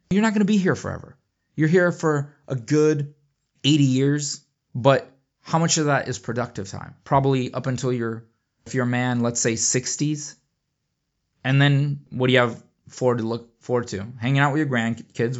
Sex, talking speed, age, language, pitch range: male, 190 wpm, 20-39, English, 110-135 Hz